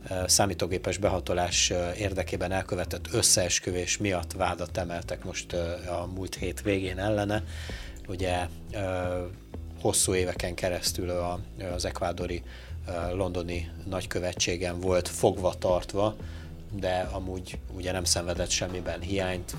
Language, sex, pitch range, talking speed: Hungarian, male, 85-95 Hz, 95 wpm